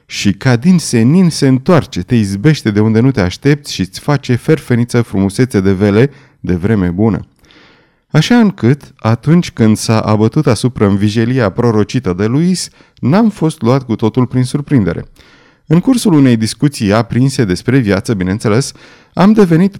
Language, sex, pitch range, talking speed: Romanian, male, 105-150 Hz, 155 wpm